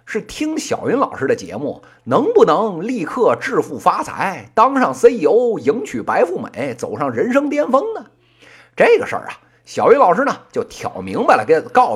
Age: 50-69